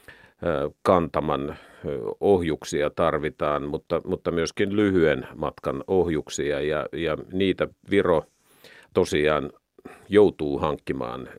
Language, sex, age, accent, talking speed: Finnish, male, 50-69, native, 85 wpm